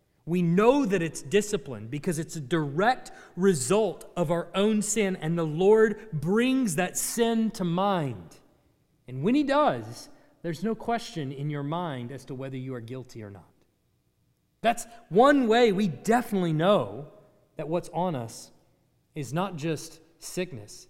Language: English